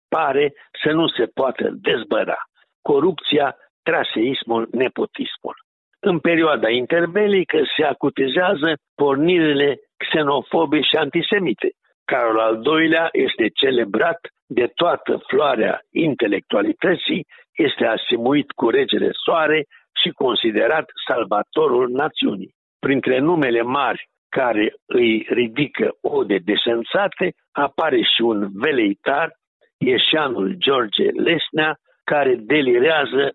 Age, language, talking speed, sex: 60-79, Romanian, 95 wpm, male